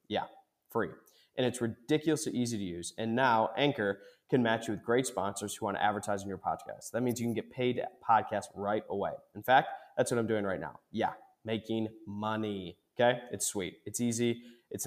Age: 20-39